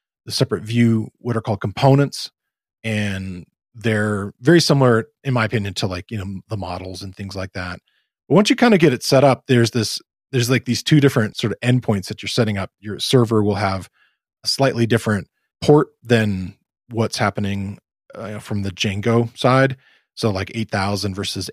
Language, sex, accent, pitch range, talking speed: English, male, American, 100-125 Hz, 185 wpm